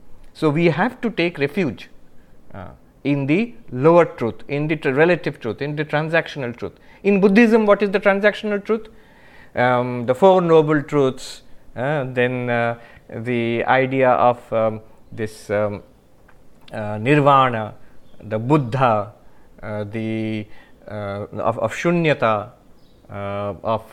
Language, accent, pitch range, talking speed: English, Indian, 110-170 Hz, 135 wpm